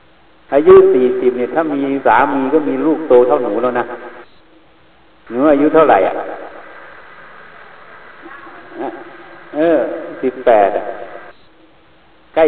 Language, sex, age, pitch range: Thai, male, 60-79, 120-145 Hz